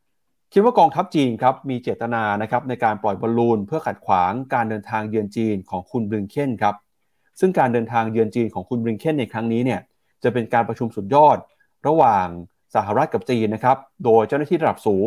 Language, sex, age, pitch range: Thai, male, 30-49, 115-145 Hz